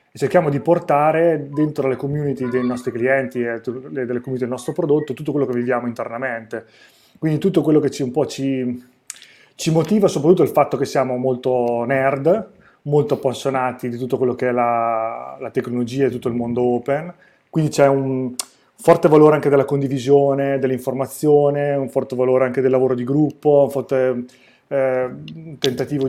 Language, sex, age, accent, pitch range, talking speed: Italian, male, 20-39, native, 125-150 Hz, 170 wpm